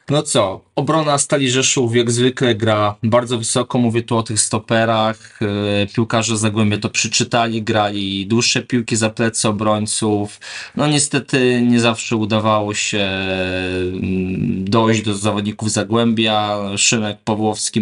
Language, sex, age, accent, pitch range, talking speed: Polish, male, 20-39, native, 105-125 Hz, 125 wpm